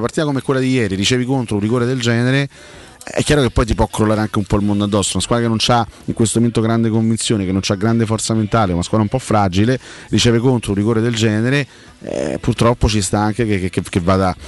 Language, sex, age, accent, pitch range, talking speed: Italian, male, 30-49, native, 100-125 Hz, 250 wpm